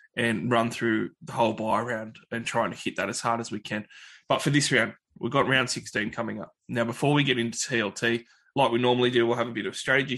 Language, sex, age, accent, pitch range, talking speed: English, male, 20-39, Australian, 115-130 Hz, 255 wpm